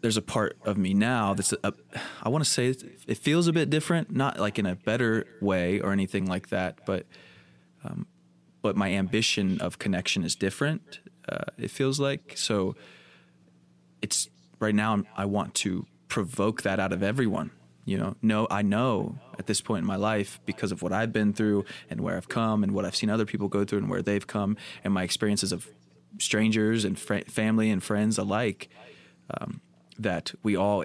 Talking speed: 200 wpm